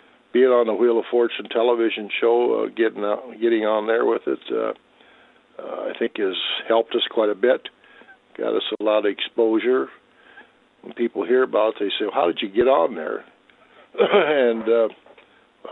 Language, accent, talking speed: English, American, 185 wpm